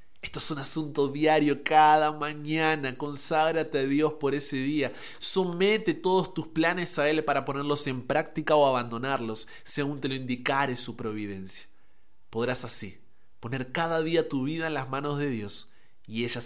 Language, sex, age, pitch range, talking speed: Spanish, male, 20-39, 120-155 Hz, 165 wpm